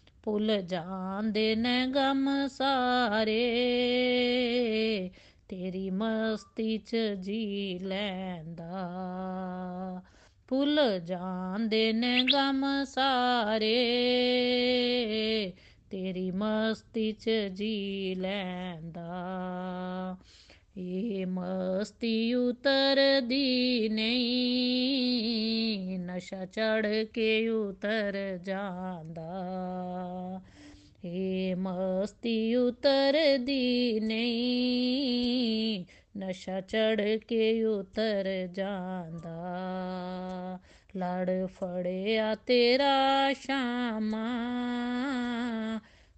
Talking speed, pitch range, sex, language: 50 wpm, 185-245 Hz, female, Punjabi